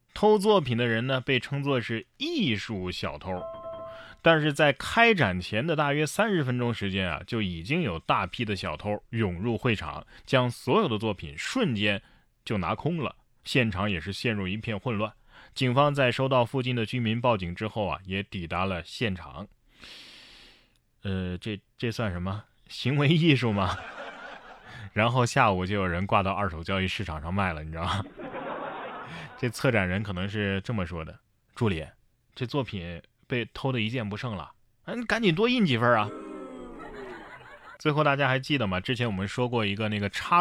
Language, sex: Chinese, male